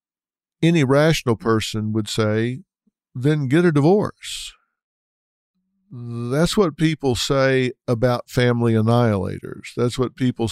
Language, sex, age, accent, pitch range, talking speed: English, male, 50-69, American, 110-130 Hz, 110 wpm